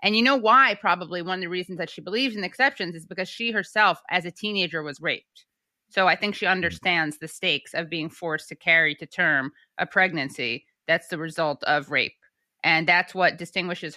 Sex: female